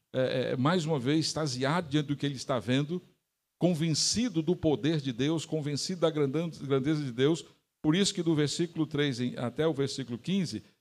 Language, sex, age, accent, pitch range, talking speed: Portuguese, male, 60-79, Brazilian, 135-160 Hz, 170 wpm